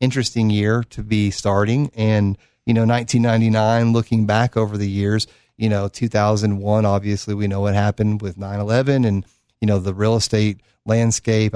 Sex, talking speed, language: male, 165 wpm, English